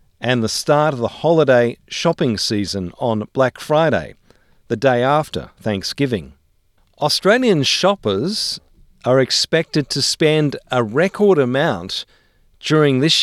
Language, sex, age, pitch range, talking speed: English, male, 50-69, 100-140 Hz, 120 wpm